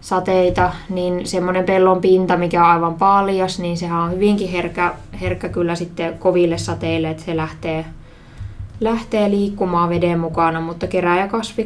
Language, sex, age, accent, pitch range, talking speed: Finnish, female, 20-39, native, 170-190 Hz, 130 wpm